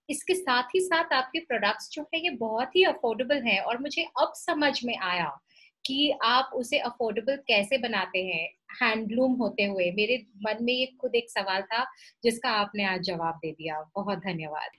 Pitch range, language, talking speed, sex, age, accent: 205-275 Hz, Hindi, 180 wpm, female, 30-49, native